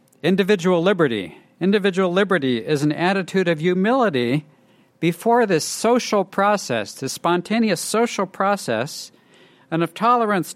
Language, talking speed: English, 115 wpm